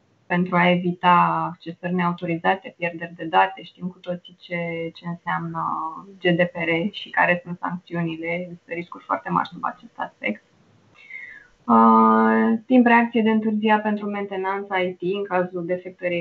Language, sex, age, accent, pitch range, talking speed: Romanian, female, 20-39, native, 170-205 Hz, 135 wpm